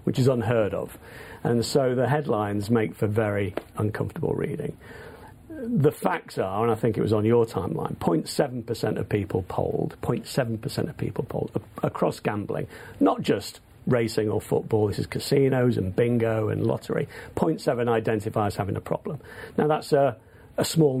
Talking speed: 160 wpm